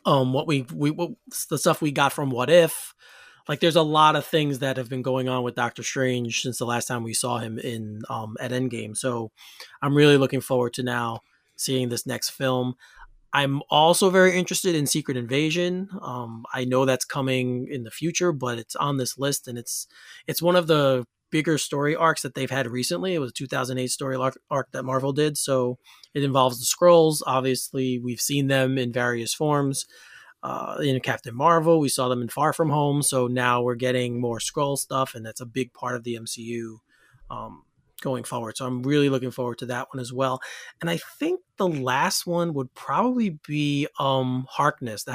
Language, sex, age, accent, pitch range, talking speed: English, male, 20-39, American, 125-155 Hz, 205 wpm